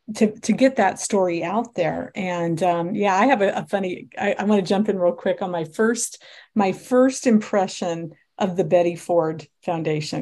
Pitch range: 175-220 Hz